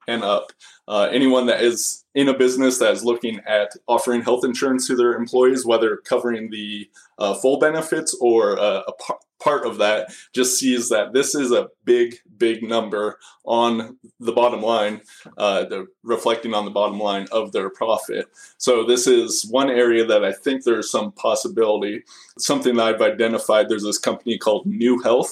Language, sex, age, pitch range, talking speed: English, male, 20-39, 115-130 Hz, 175 wpm